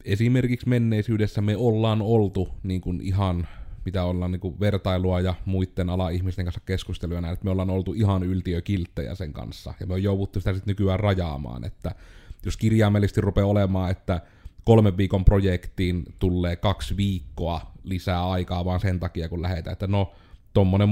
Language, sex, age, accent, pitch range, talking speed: Finnish, male, 30-49, native, 90-100 Hz, 160 wpm